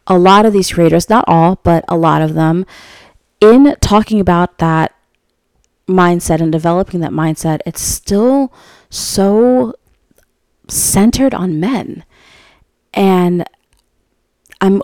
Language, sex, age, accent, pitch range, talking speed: English, female, 20-39, American, 160-190 Hz, 115 wpm